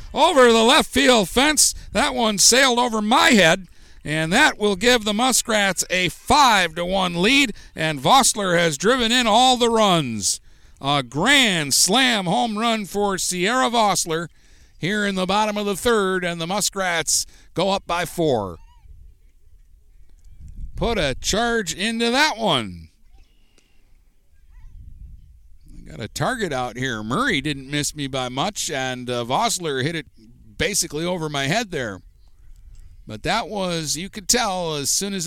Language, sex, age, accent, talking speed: English, male, 50-69, American, 150 wpm